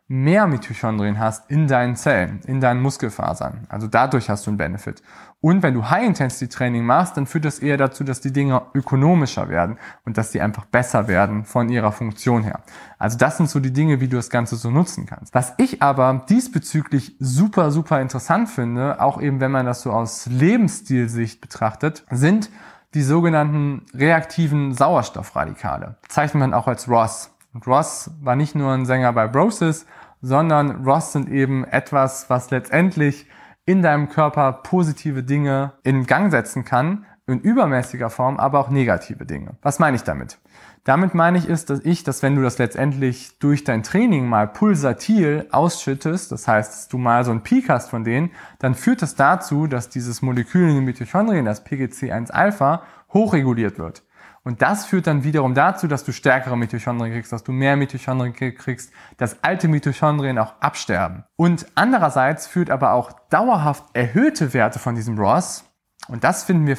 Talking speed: 175 wpm